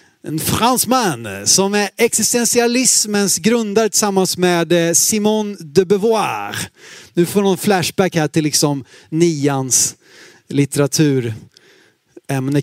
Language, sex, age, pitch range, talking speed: Swedish, male, 30-49, 180-270 Hz, 100 wpm